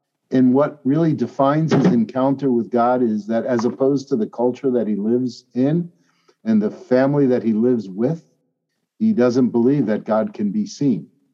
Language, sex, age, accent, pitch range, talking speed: English, male, 50-69, American, 120-155 Hz, 180 wpm